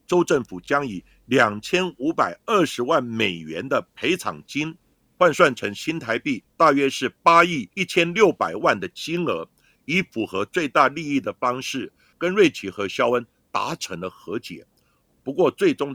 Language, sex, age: Chinese, male, 50-69